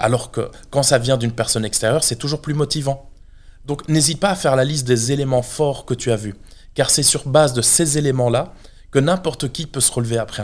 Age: 20-39